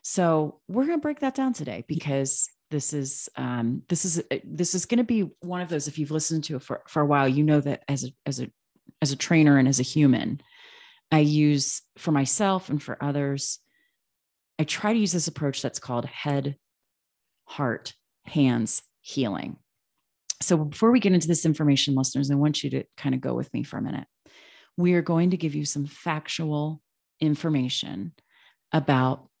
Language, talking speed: English, 190 wpm